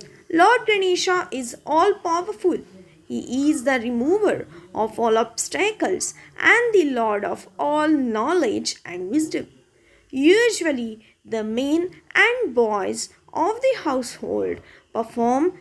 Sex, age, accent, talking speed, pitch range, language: female, 20-39, native, 110 wpm, 245-360 Hz, Hindi